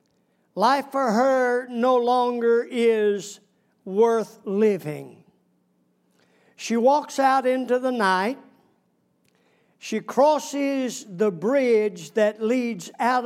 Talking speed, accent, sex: 95 wpm, American, male